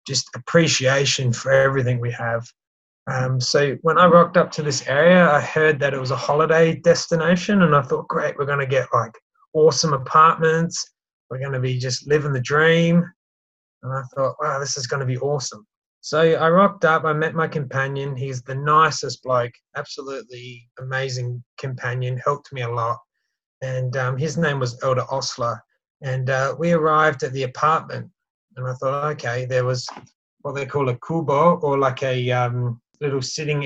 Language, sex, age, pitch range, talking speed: English, male, 20-39, 130-155 Hz, 175 wpm